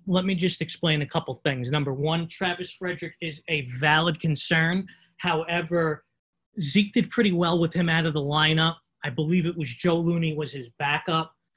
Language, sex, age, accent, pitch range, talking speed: English, male, 20-39, American, 150-175 Hz, 180 wpm